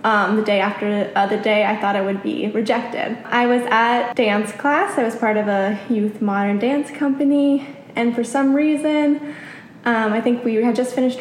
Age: 10-29